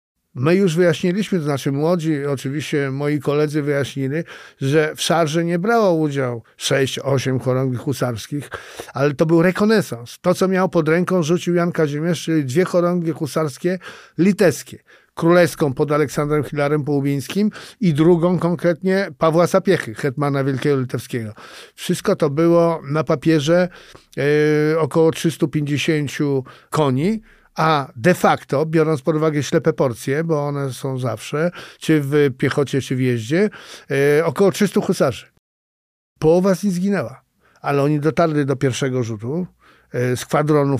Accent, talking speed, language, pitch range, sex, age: native, 135 wpm, Polish, 140-175 Hz, male, 50-69